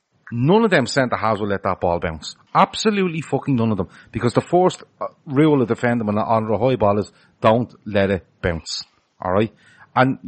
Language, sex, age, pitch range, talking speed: English, male, 30-49, 105-130 Hz, 200 wpm